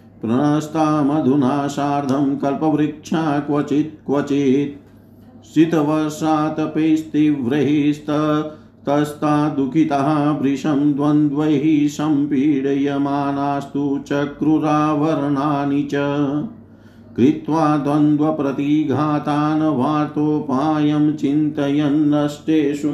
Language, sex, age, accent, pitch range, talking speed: Hindi, male, 50-69, native, 140-155 Hz, 35 wpm